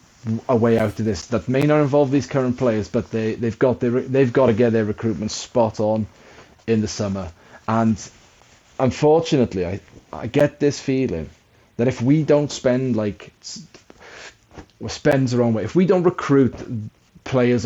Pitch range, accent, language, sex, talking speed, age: 110-130 Hz, British, English, male, 175 wpm, 30-49